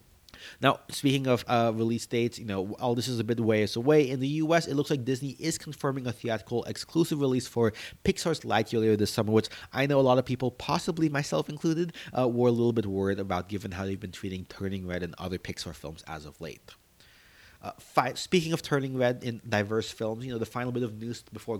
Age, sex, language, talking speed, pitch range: 30-49, male, English, 230 wpm, 105-135 Hz